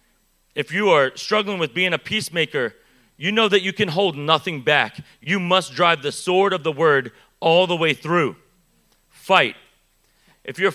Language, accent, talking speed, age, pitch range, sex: English, American, 175 wpm, 30-49, 165-210 Hz, male